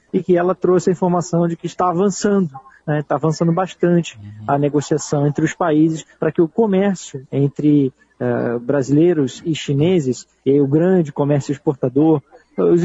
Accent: Brazilian